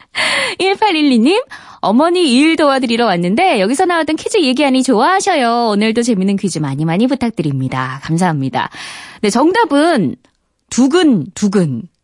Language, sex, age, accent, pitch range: Korean, female, 20-39, native, 190-300 Hz